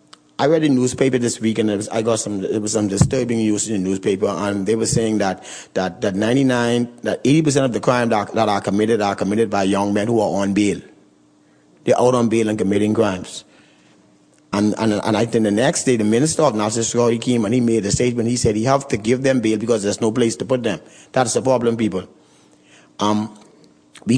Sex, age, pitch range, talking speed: male, 30-49, 100-120 Hz, 230 wpm